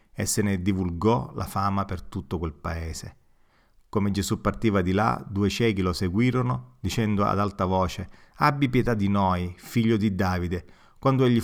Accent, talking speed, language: native, 170 wpm, Italian